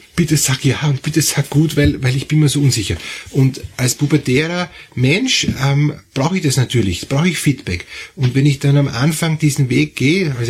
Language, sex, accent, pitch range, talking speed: German, male, Austrian, 115-150 Hz, 205 wpm